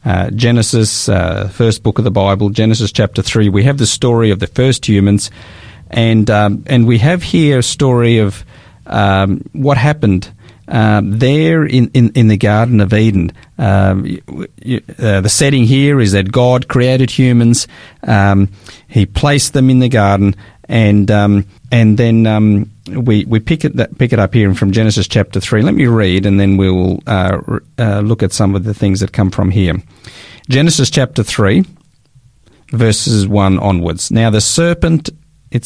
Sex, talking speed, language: male, 175 wpm, English